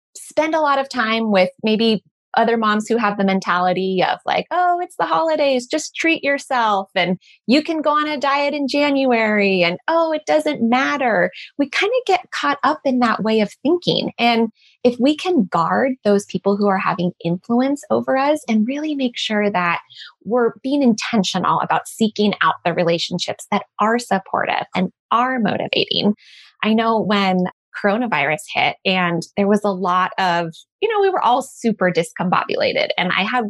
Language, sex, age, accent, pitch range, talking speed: English, female, 20-39, American, 185-260 Hz, 180 wpm